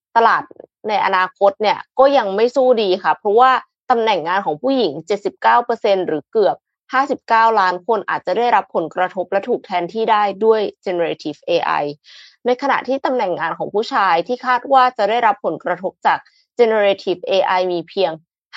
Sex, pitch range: female, 185-250 Hz